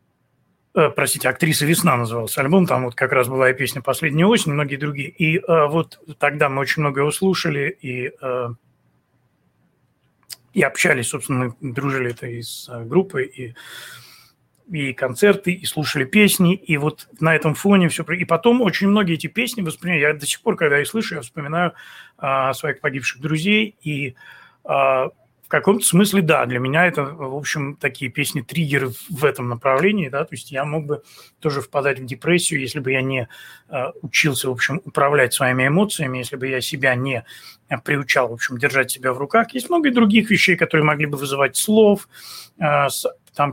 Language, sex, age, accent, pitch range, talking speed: Russian, male, 30-49, native, 135-185 Hz, 180 wpm